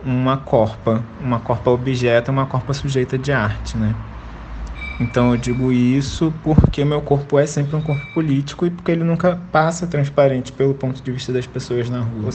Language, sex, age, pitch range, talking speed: Portuguese, male, 20-39, 125-155 Hz, 185 wpm